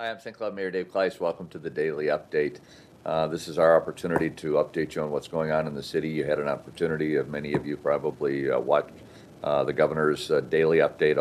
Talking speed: 235 wpm